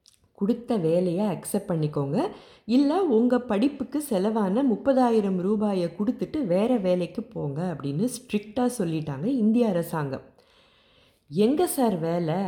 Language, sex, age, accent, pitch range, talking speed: Tamil, female, 20-39, native, 155-220 Hz, 105 wpm